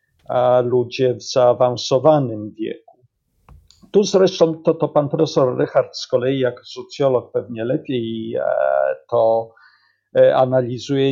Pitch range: 125-165 Hz